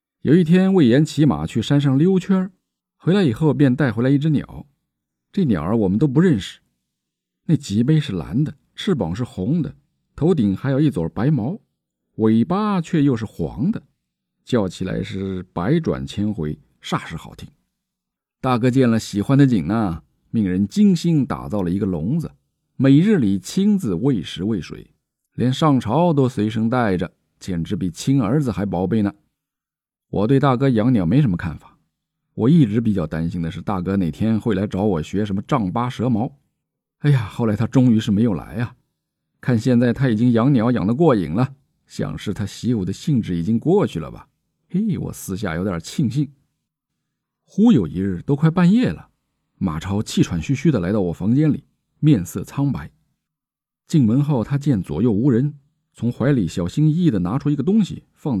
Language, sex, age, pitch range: Chinese, male, 50-69, 100-150 Hz